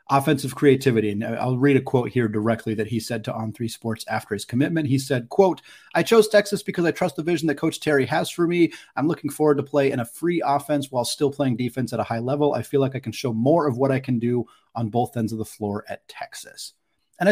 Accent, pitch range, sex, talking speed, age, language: American, 120-150 Hz, male, 250 wpm, 30-49, English